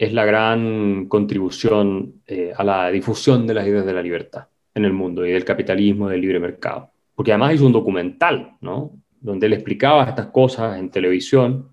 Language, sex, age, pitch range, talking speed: Spanish, male, 30-49, 105-130 Hz, 190 wpm